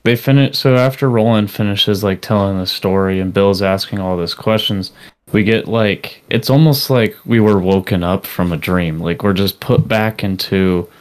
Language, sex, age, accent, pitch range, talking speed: English, male, 20-39, American, 90-110 Hz, 190 wpm